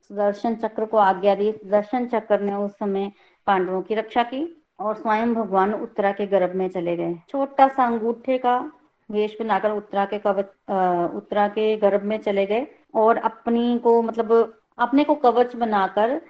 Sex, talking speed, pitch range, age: female, 170 wpm, 200-235 Hz, 20-39